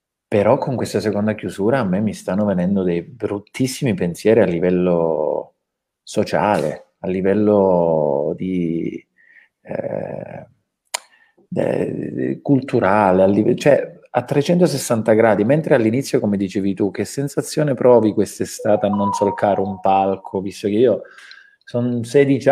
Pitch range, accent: 95-120 Hz, native